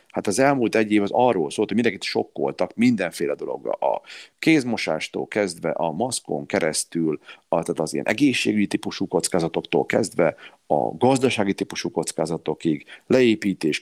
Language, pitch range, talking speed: Hungarian, 90-115 Hz, 140 wpm